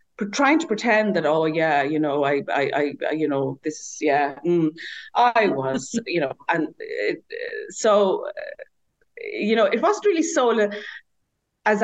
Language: English